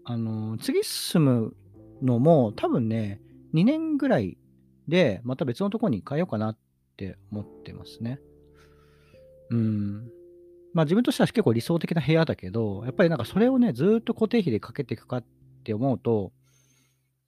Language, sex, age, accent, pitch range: Japanese, male, 40-59, native, 105-160 Hz